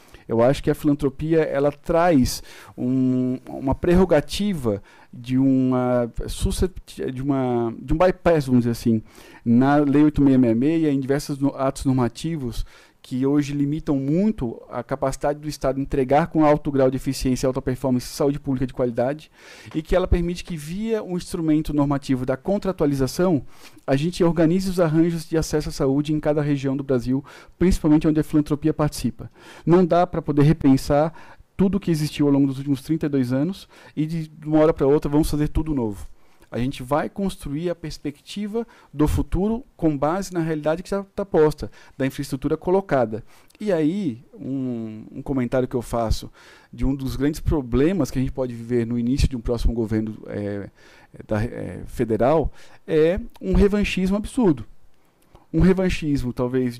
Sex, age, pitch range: male, 50-69, 130-160 Hz